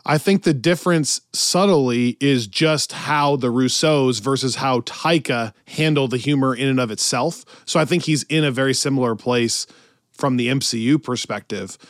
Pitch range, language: 125-160 Hz, English